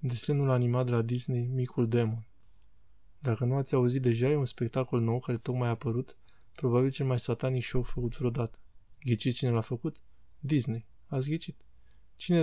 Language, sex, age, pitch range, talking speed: Romanian, male, 20-39, 115-130 Hz, 170 wpm